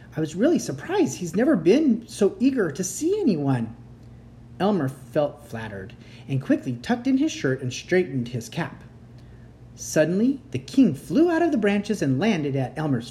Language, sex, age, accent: English, male, 40-59, American